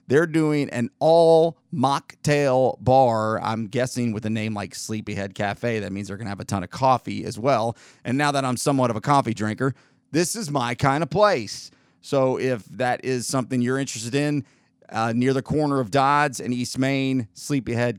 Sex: male